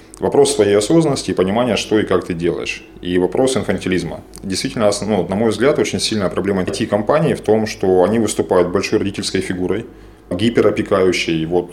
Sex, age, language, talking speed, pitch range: male, 20-39, Russian, 160 wpm, 90-115 Hz